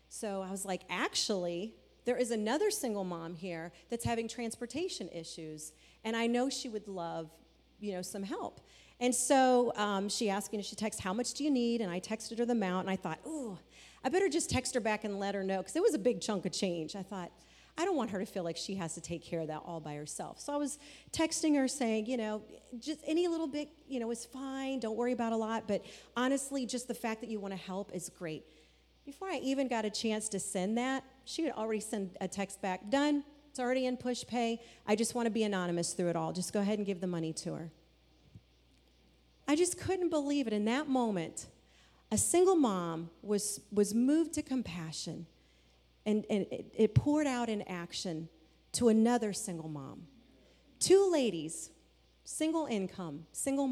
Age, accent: 40-59, American